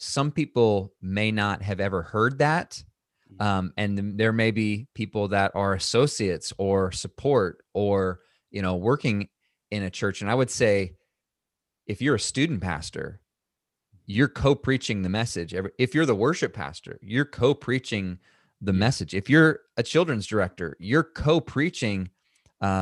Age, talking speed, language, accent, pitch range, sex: 30-49, 155 wpm, English, American, 95-125 Hz, male